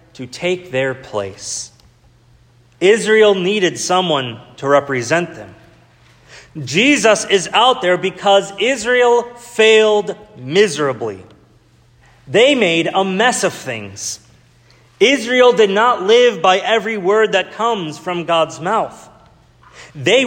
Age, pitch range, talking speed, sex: 30-49, 130-210 Hz, 110 wpm, male